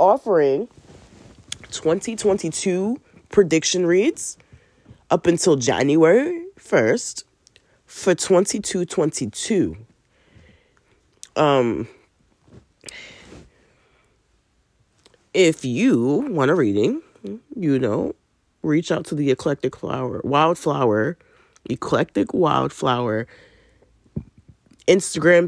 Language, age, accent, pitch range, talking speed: English, 20-39, American, 130-195 Hz, 65 wpm